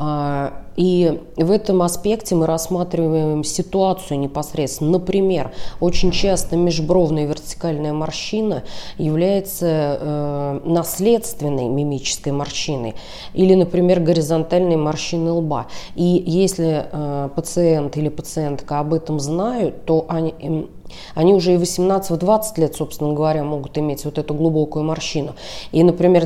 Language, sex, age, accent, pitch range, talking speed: Russian, female, 20-39, native, 150-180 Hz, 110 wpm